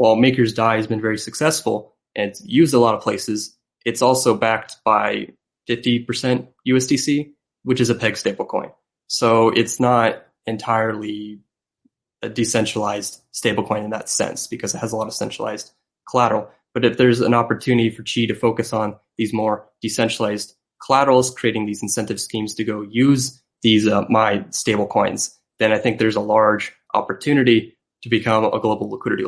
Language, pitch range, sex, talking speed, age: English, 105-120 Hz, male, 165 wpm, 20-39